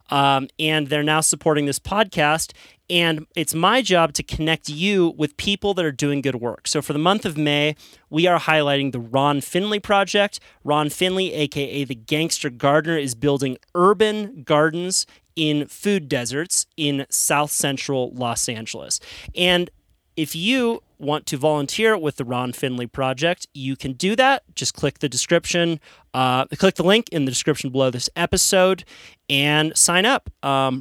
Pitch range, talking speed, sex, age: 130-170 Hz, 165 wpm, male, 30-49